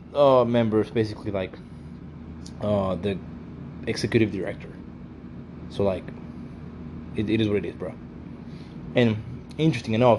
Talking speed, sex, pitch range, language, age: 120 wpm, male, 85-120 Hz, English, 20-39